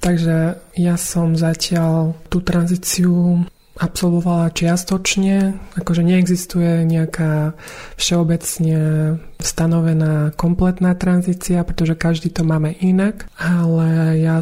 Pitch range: 165-180 Hz